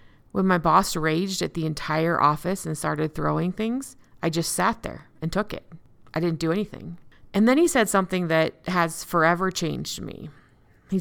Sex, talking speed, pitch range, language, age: female, 185 wpm, 155-195 Hz, English, 30-49